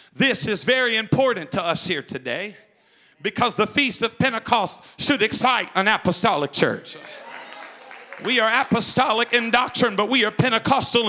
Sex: male